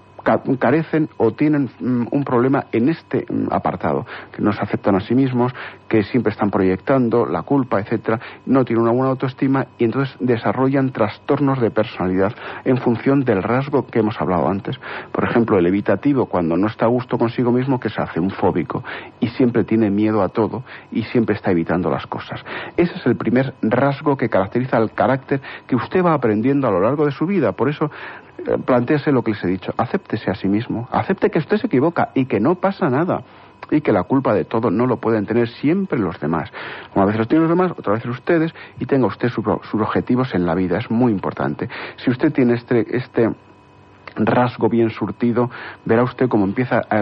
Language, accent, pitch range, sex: Spanish, Spanish, 105-135 Hz, male